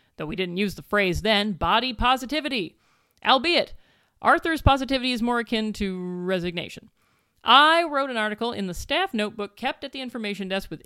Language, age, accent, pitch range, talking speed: English, 40-59, American, 200-280 Hz, 170 wpm